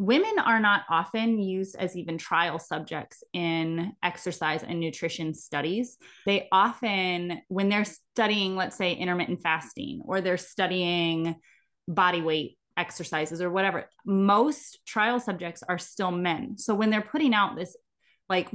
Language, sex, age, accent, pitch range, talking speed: English, female, 20-39, American, 170-205 Hz, 140 wpm